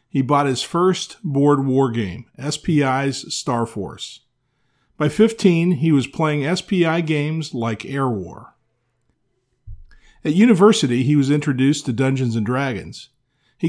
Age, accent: 50-69, American